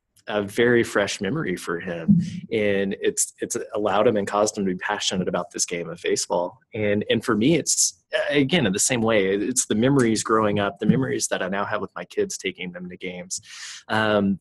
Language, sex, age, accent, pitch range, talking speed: English, male, 20-39, American, 100-120 Hz, 210 wpm